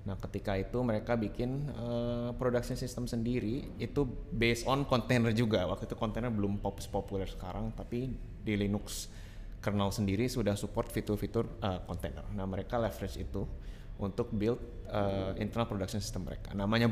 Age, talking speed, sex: 20-39, 150 wpm, male